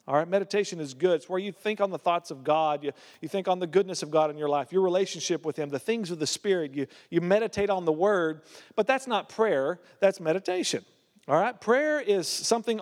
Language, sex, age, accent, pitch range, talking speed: English, male, 40-59, American, 155-200 Hz, 240 wpm